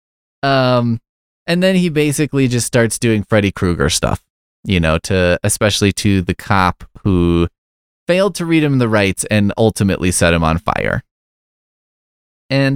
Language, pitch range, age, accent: English, 90-125 Hz, 20-39, American